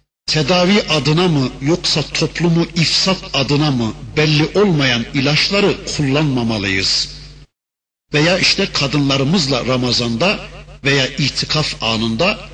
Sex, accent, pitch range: male, native, 130-190 Hz